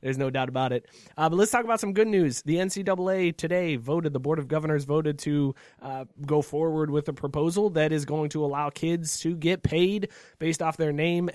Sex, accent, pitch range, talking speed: male, American, 135-165 Hz, 220 wpm